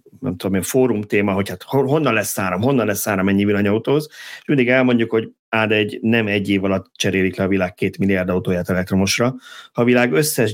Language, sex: Hungarian, male